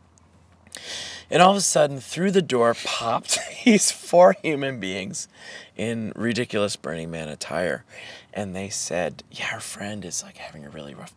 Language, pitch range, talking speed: English, 90-135 Hz, 160 wpm